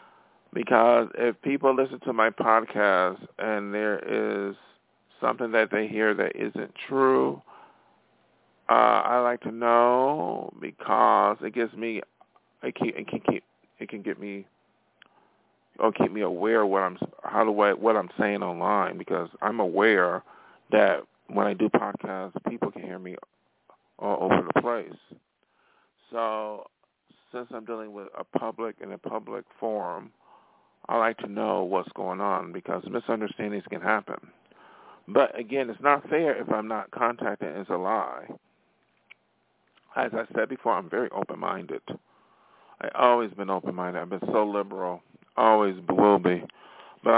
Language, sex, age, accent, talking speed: English, male, 40-59, American, 150 wpm